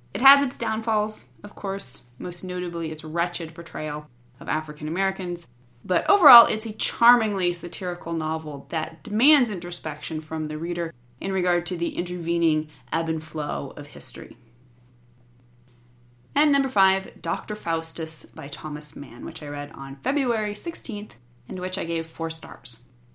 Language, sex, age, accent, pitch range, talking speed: English, female, 20-39, American, 150-210 Hz, 150 wpm